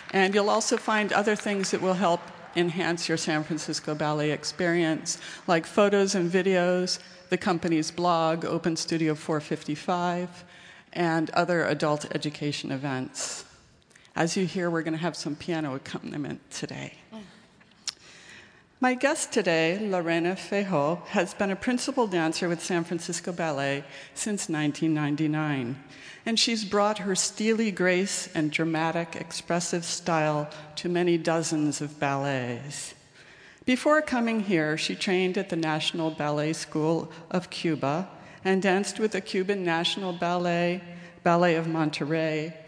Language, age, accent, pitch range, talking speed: English, 50-69, American, 155-185 Hz, 130 wpm